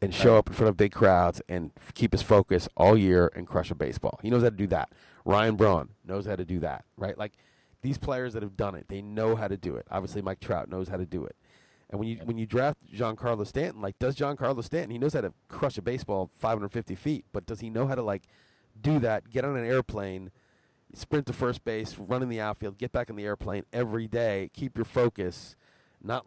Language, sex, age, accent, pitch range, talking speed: English, male, 30-49, American, 100-130 Hz, 245 wpm